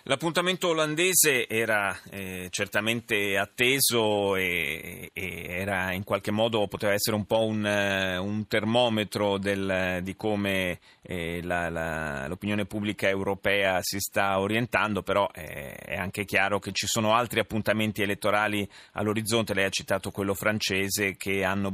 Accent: native